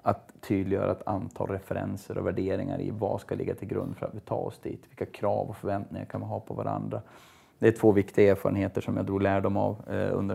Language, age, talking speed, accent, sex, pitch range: Swedish, 30-49, 225 wpm, native, male, 95-110 Hz